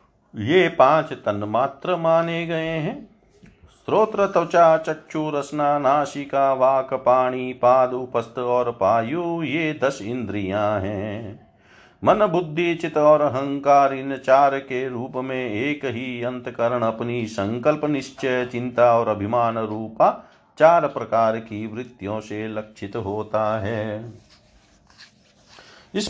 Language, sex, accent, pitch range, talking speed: Hindi, male, native, 115-150 Hz, 115 wpm